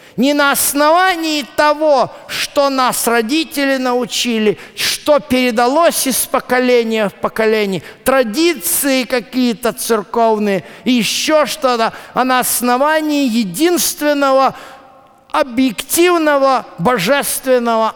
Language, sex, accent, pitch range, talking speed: Russian, male, native, 195-265 Hz, 85 wpm